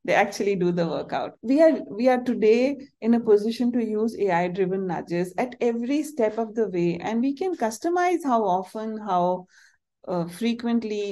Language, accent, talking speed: English, Indian, 165 wpm